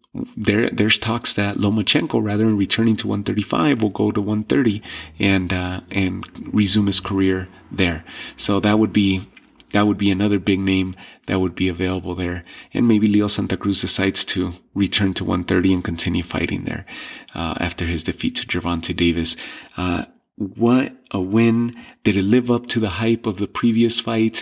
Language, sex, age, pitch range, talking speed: English, male, 30-49, 90-105 Hz, 175 wpm